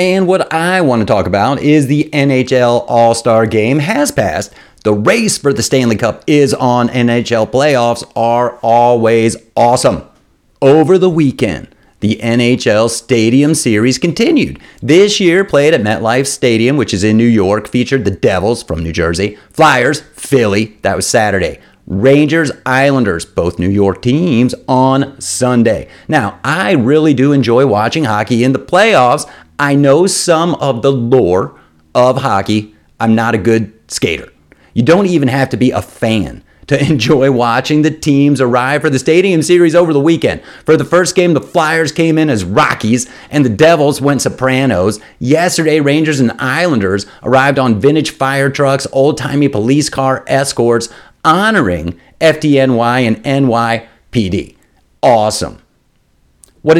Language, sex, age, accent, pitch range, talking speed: English, male, 40-59, American, 115-145 Hz, 150 wpm